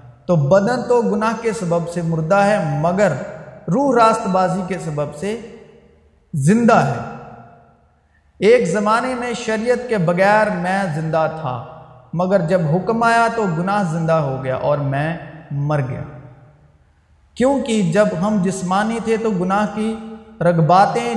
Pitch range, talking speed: 160-215 Hz, 140 wpm